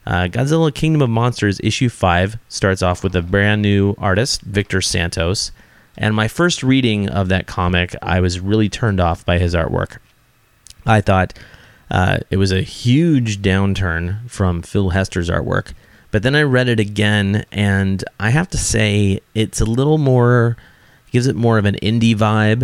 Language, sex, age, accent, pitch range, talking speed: English, male, 30-49, American, 95-115 Hz, 170 wpm